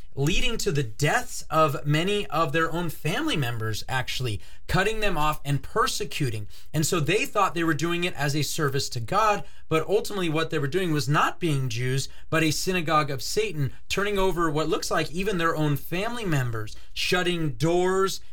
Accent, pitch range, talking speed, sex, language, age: American, 140-190 Hz, 185 wpm, male, English, 30-49